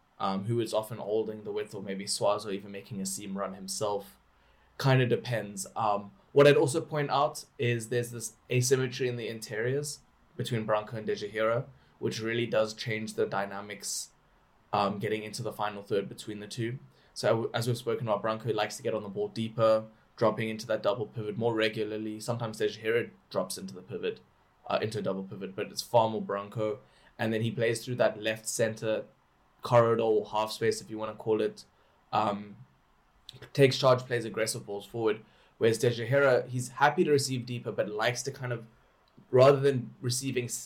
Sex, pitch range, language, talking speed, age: male, 110-125 Hz, English, 185 wpm, 20-39